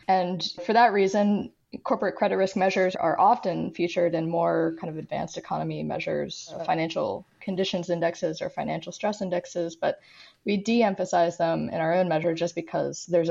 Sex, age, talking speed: female, 20-39, 160 wpm